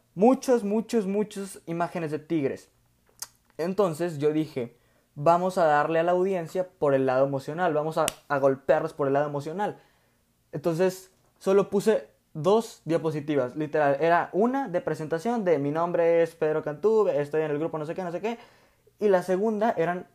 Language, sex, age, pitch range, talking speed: Spanish, male, 20-39, 145-190 Hz, 170 wpm